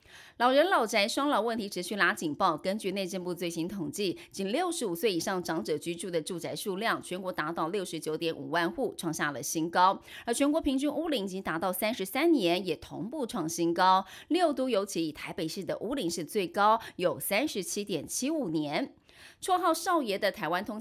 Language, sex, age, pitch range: Chinese, female, 30-49, 170-255 Hz